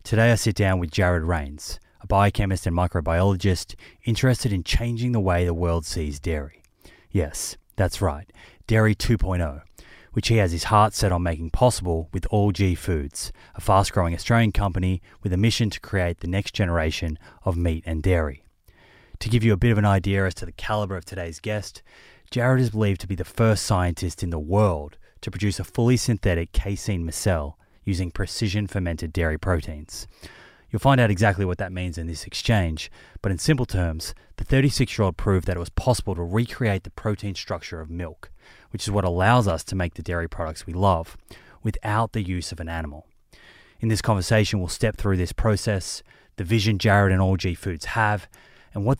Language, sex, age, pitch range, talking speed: English, male, 20-39, 85-110 Hz, 190 wpm